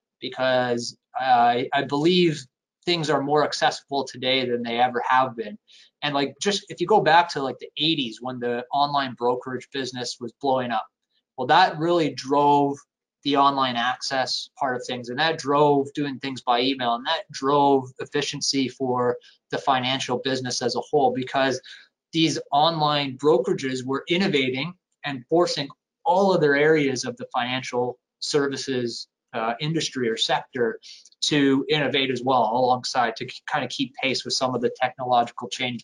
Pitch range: 125-155 Hz